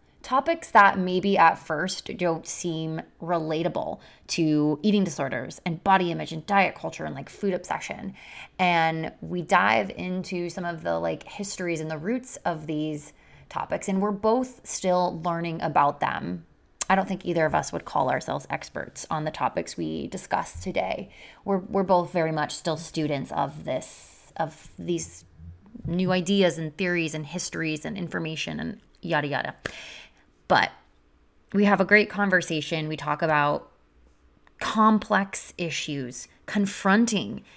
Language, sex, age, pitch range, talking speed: English, female, 20-39, 155-190 Hz, 150 wpm